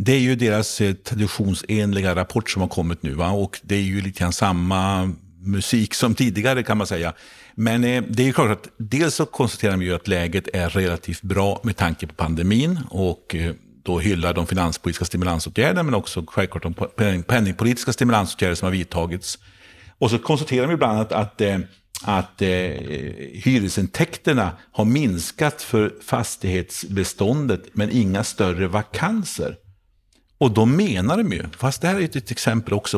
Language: Swedish